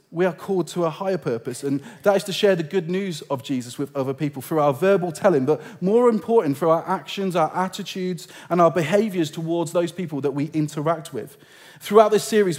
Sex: male